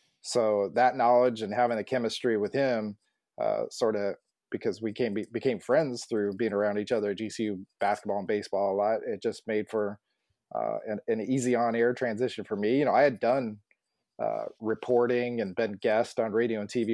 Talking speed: 200 wpm